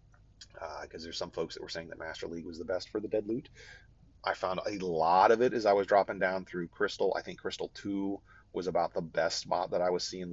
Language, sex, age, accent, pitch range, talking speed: English, male, 30-49, American, 95-125 Hz, 255 wpm